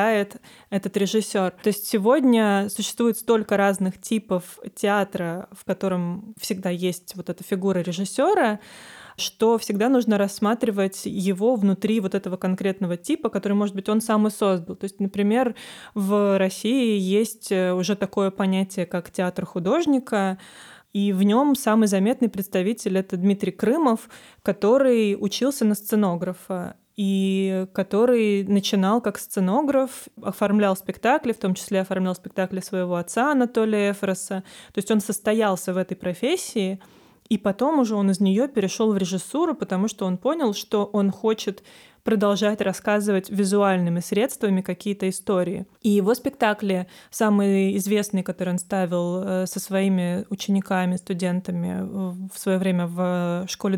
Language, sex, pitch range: Russian, female, 190-225 Hz